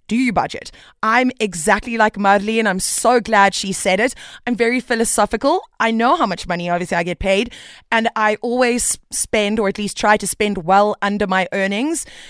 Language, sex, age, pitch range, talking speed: English, female, 20-39, 195-245 Hz, 195 wpm